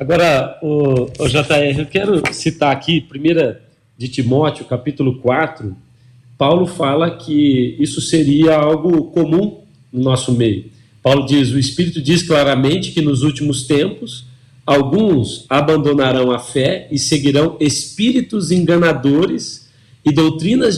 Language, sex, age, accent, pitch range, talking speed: Portuguese, male, 40-59, Brazilian, 135-170 Hz, 125 wpm